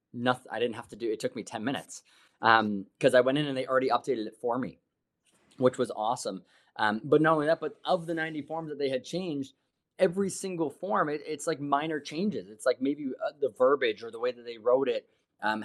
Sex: male